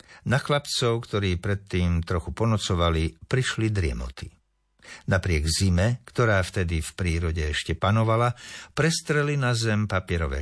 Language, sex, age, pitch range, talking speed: Slovak, male, 60-79, 90-115 Hz, 115 wpm